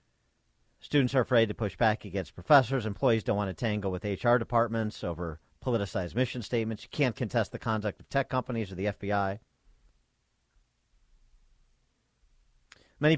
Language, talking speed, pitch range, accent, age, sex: English, 145 wpm, 95-120 Hz, American, 50-69, male